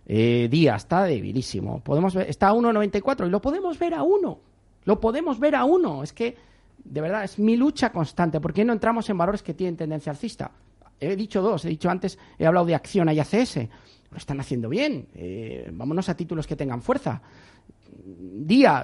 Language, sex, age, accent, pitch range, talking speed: Spanish, male, 40-59, Spanish, 150-215 Hz, 190 wpm